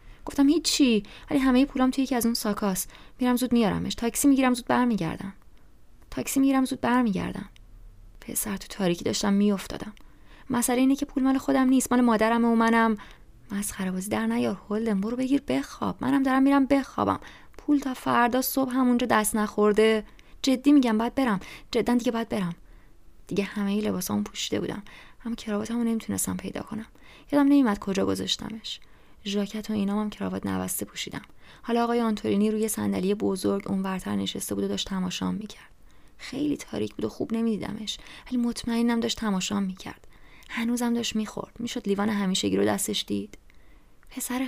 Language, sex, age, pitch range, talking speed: English, female, 20-39, 195-245 Hz, 165 wpm